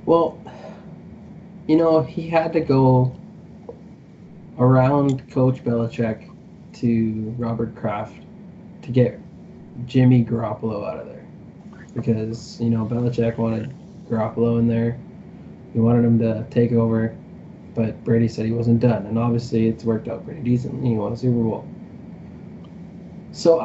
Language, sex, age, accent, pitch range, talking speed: English, male, 20-39, American, 115-145 Hz, 135 wpm